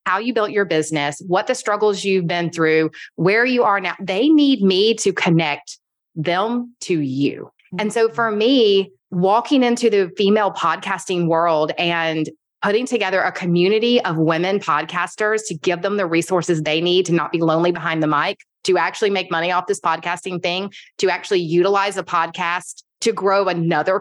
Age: 30-49